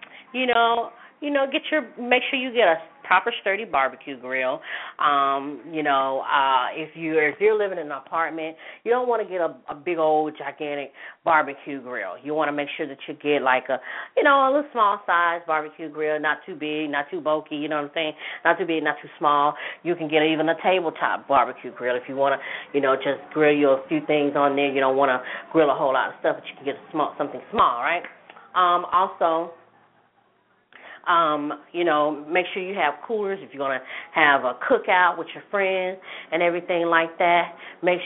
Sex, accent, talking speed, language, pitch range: female, American, 220 wpm, English, 145-185 Hz